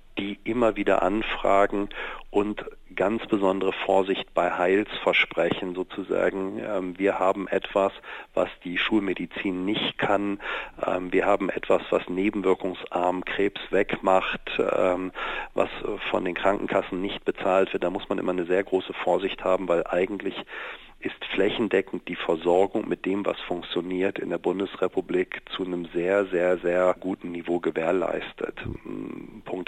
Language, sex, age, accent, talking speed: German, male, 40-59, German, 130 wpm